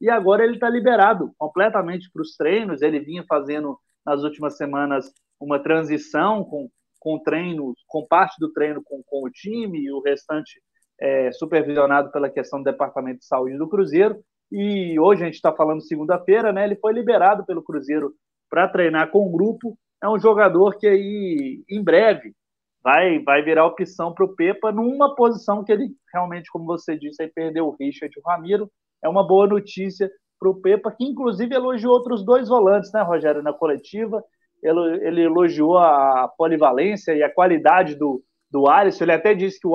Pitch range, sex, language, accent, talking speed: 145-205 Hz, male, Portuguese, Brazilian, 180 wpm